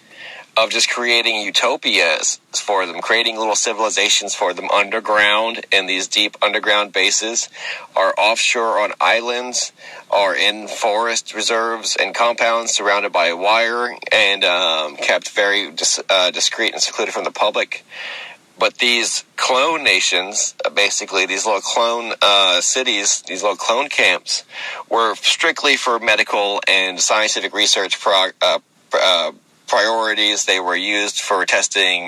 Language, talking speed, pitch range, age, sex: English, 140 wpm, 100-120 Hz, 30-49, male